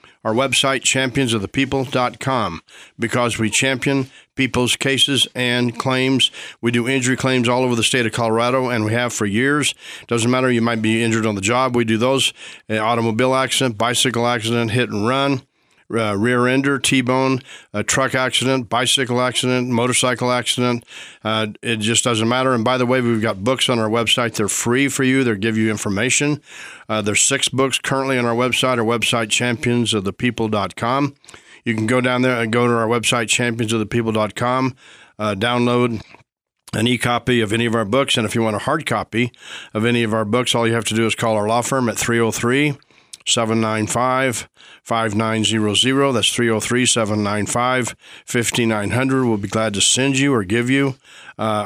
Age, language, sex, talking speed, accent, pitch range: 40-59, English, male, 170 wpm, American, 115-130 Hz